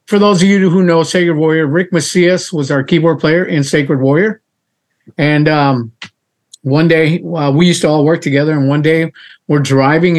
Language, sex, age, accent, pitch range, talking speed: English, male, 50-69, American, 140-165 Hz, 195 wpm